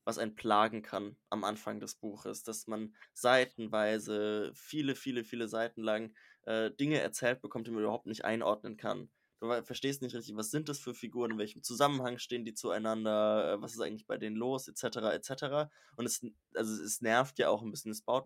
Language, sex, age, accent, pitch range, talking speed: German, male, 20-39, German, 110-120 Hz, 205 wpm